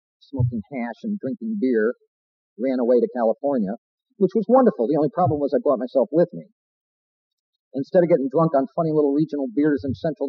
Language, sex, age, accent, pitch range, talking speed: English, male, 50-69, American, 125-170 Hz, 185 wpm